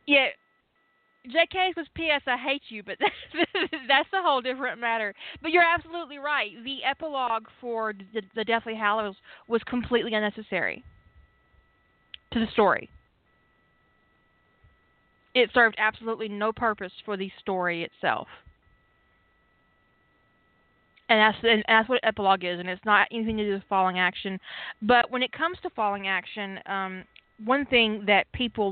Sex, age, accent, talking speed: female, 20-39, American, 145 wpm